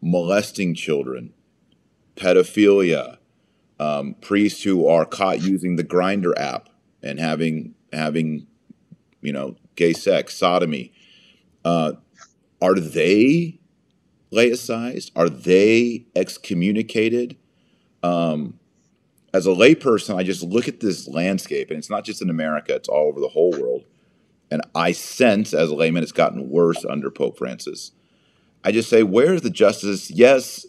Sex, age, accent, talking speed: male, 30-49, American, 135 wpm